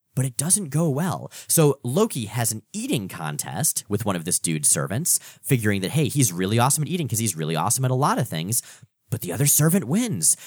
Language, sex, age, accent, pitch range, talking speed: English, male, 30-49, American, 125-180 Hz, 225 wpm